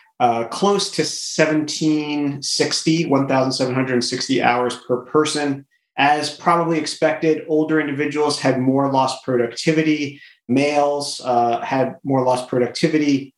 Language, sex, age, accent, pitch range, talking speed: English, male, 30-49, American, 125-155 Hz, 105 wpm